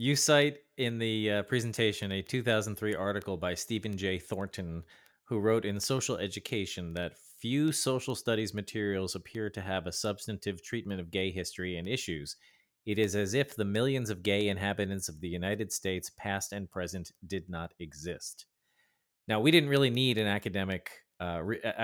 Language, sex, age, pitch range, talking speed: English, male, 30-49, 90-115 Hz, 170 wpm